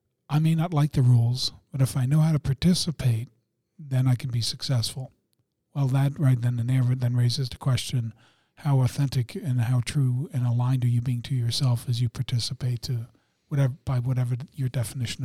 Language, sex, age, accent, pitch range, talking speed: English, male, 50-69, American, 120-140 Hz, 195 wpm